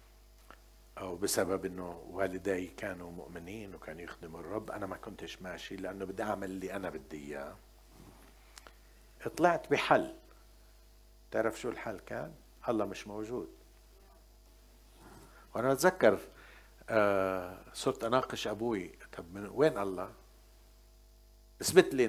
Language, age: Arabic, 60-79